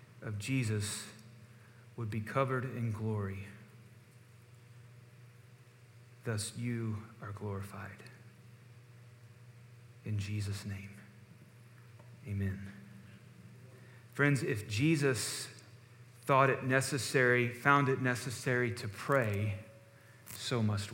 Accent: American